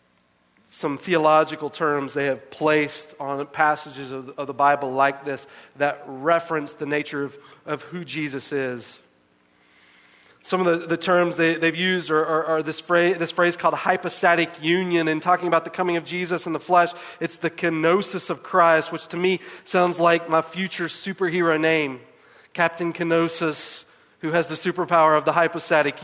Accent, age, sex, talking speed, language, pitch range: American, 30-49, male, 170 wpm, English, 145-185 Hz